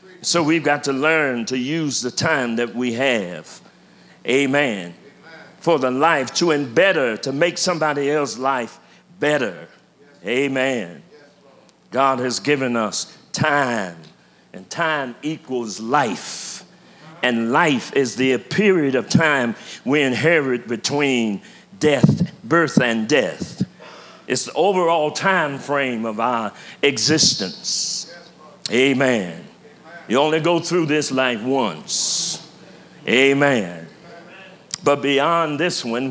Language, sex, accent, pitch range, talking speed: English, male, American, 130-165 Hz, 115 wpm